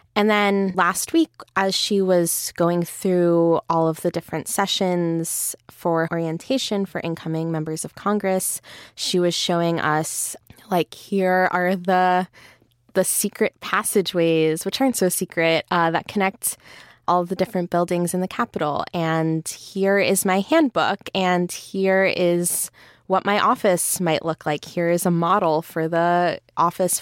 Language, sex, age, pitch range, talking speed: English, female, 20-39, 165-195 Hz, 150 wpm